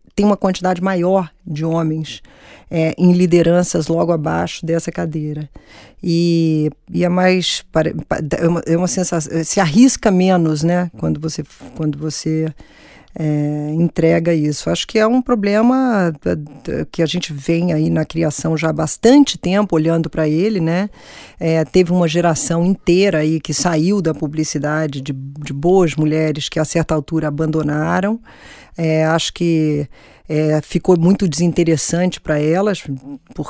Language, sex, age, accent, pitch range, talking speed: Portuguese, female, 20-39, Brazilian, 155-190 Hz, 135 wpm